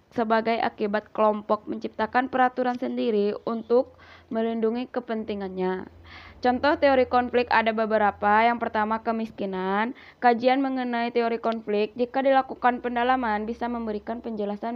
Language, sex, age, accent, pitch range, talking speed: Indonesian, female, 20-39, native, 215-250 Hz, 110 wpm